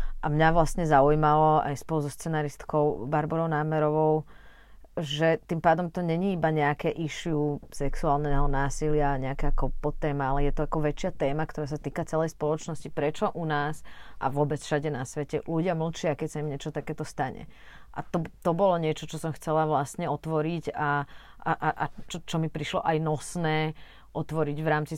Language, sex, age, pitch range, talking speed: Slovak, female, 30-49, 140-155 Hz, 175 wpm